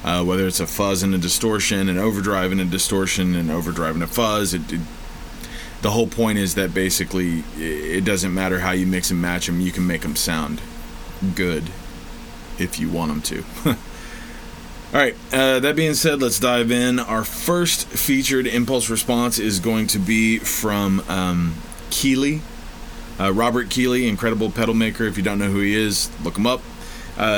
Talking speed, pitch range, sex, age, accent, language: 175 wpm, 95-115 Hz, male, 30-49, American, English